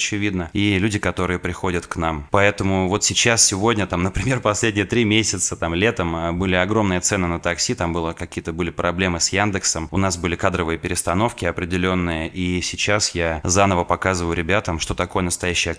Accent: native